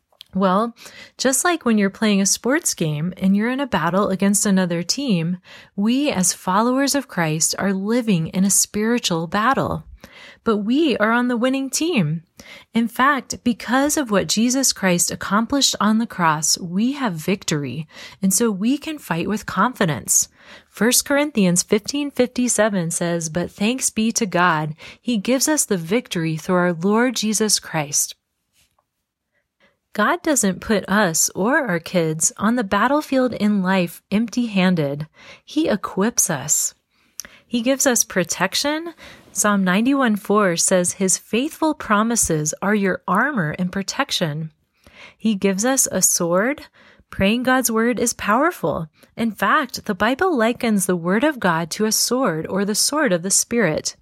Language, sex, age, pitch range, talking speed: English, female, 30-49, 185-250 Hz, 150 wpm